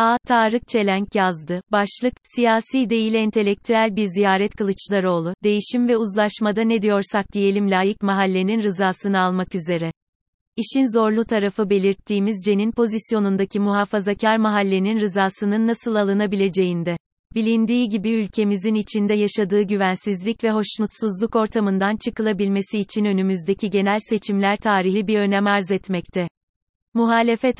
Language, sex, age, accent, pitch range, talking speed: Turkish, female, 30-49, native, 195-225 Hz, 115 wpm